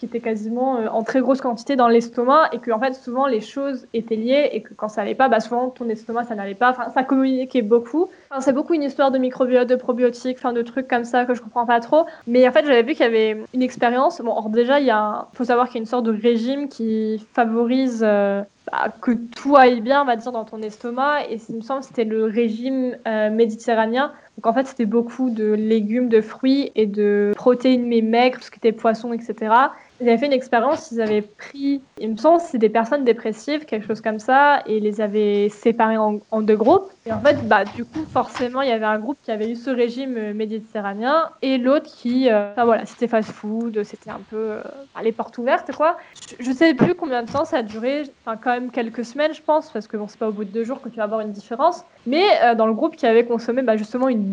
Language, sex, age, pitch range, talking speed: French, female, 10-29, 220-265 Hz, 250 wpm